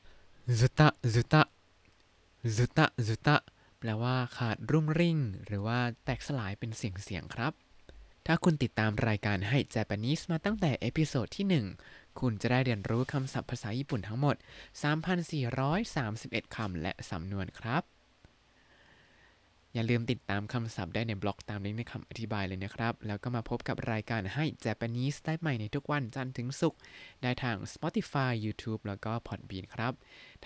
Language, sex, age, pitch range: Thai, male, 20-39, 105-135 Hz